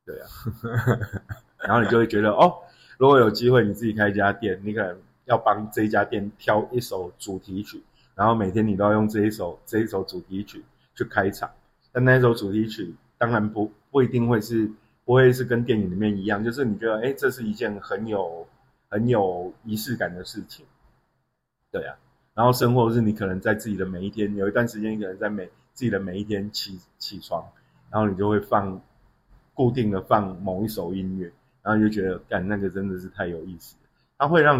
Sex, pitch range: male, 100-120 Hz